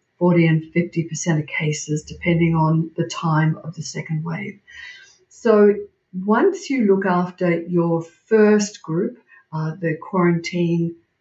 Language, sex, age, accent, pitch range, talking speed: English, female, 50-69, Australian, 165-195 Hz, 135 wpm